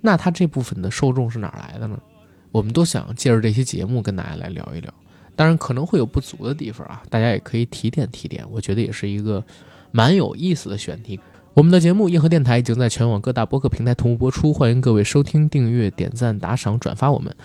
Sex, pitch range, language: male, 110-145 Hz, Chinese